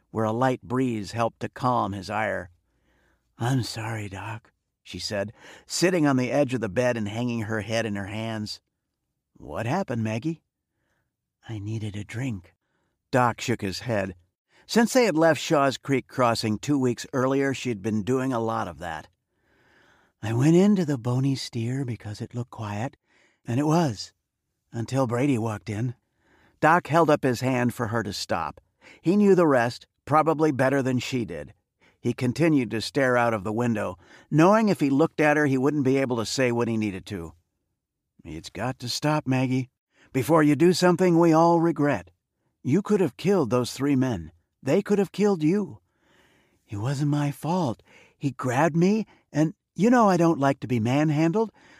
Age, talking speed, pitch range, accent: 50-69, 180 wpm, 110-150 Hz, American